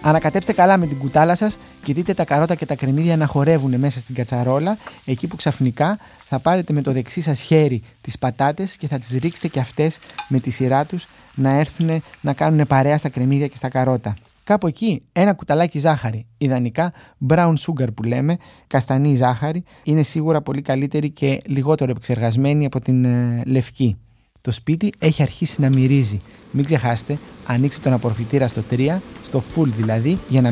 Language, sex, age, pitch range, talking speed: Greek, male, 20-39, 125-155 Hz, 180 wpm